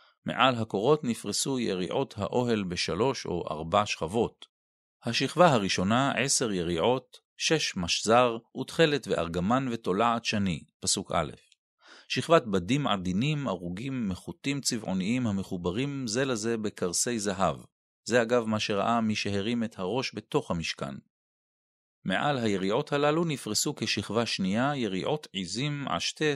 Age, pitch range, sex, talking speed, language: 40-59, 100-140 Hz, male, 115 wpm, Hebrew